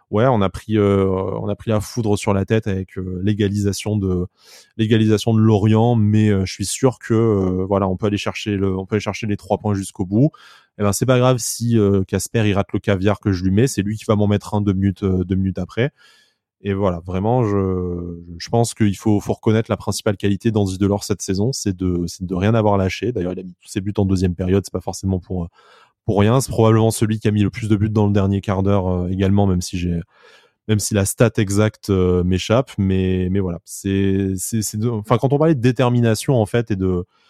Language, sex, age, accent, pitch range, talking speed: French, male, 20-39, French, 95-110 Hz, 250 wpm